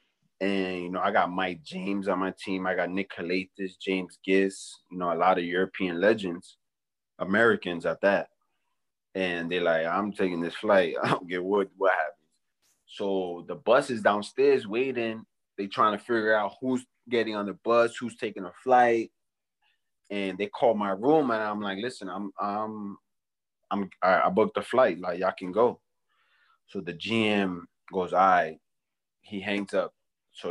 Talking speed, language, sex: 175 wpm, English, male